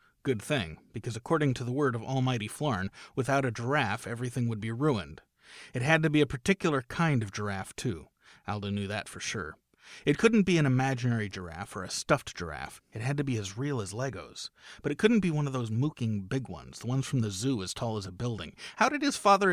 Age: 30-49